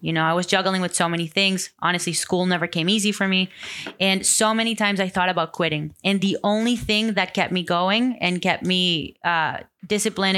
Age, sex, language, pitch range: 20-39, female, English, 170-200 Hz